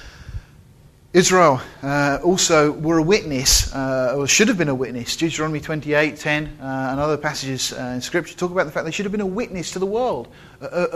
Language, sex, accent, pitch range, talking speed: English, male, British, 130-170 Hz, 205 wpm